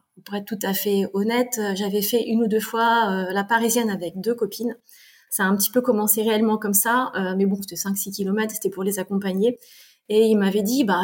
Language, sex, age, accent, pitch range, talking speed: French, female, 20-39, French, 195-235 Hz, 225 wpm